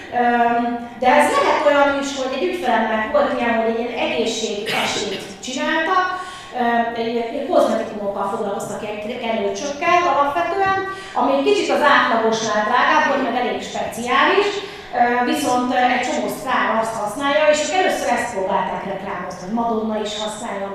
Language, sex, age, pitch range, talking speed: Hungarian, female, 30-49, 210-295 Hz, 135 wpm